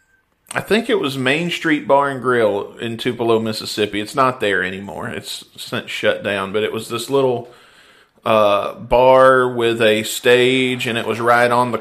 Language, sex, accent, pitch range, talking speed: English, male, American, 110-140 Hz, 185 wpm